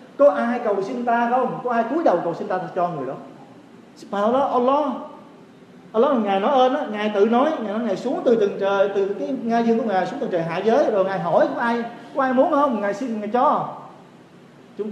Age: 30-49